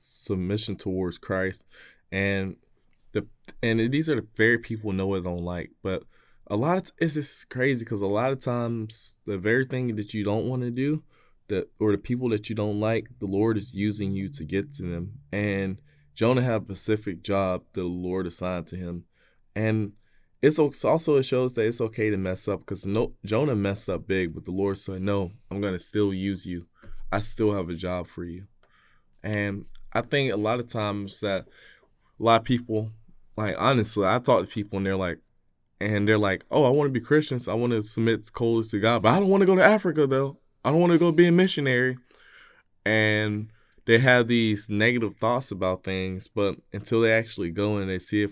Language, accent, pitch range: English, American, 95-115 Hz